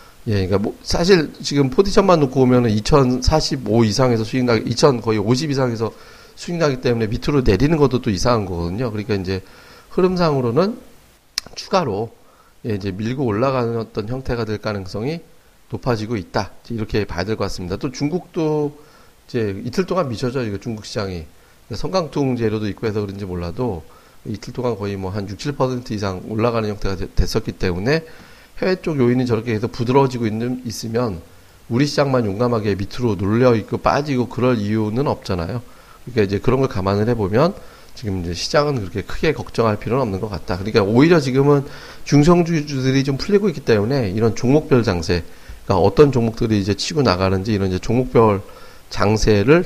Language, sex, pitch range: Korean, male, 100-135 Hz